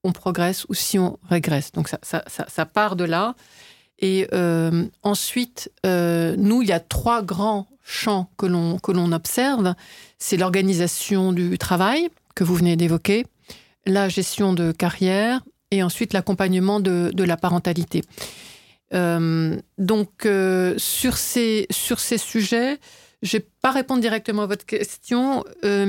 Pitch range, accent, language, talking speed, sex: 180-220 Hz, French, French, 155 wpm, female